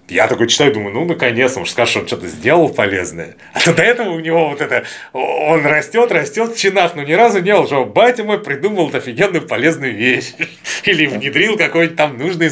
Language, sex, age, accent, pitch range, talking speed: Russian, male, 30-49, native, 115-175 Hz, 210 wpm